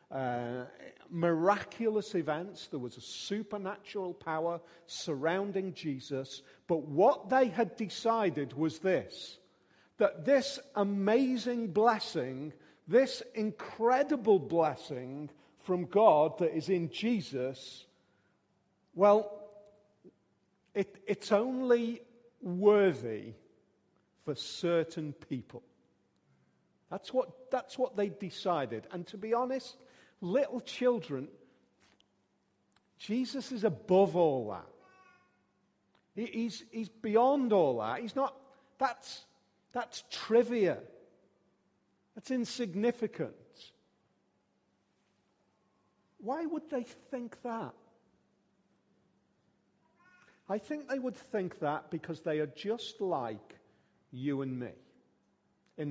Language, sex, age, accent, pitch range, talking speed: English, male, 50-69, British, 160-235 Hz, 90 wpm